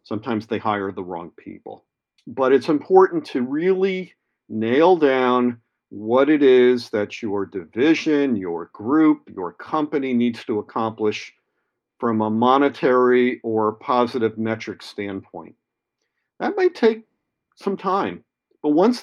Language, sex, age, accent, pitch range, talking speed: English, male, 50-69, American, 115-145 Hz, 125 wpm